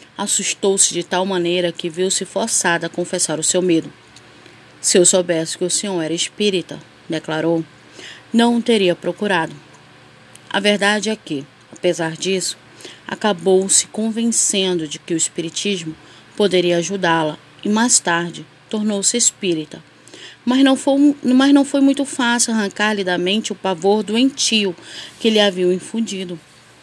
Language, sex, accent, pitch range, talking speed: Portuguese, female, Brazilian, 175-225 Hz, 135 wpm